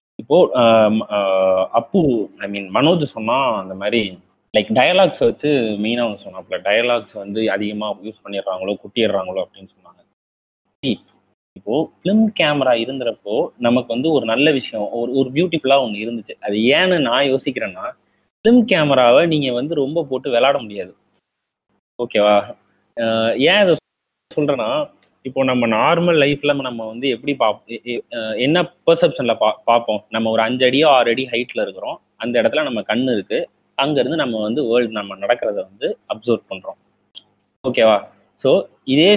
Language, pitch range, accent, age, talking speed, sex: Tamil, 110-150 Hz, native, 30-49, 130 wpm, male